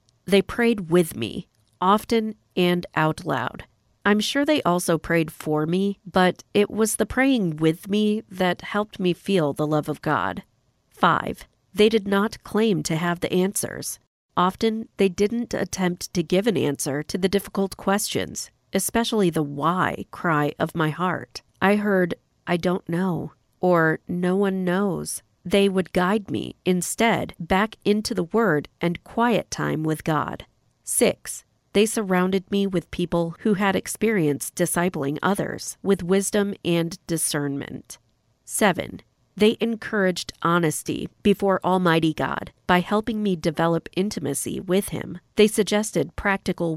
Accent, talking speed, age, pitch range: American, 145 wpm, 40-59, 160-205 Hz